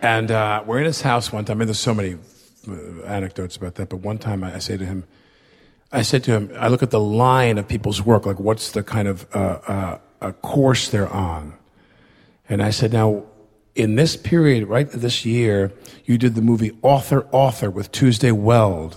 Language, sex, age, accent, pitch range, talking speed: English, male, 50-69, American, 100-130 Hz, 205 wpm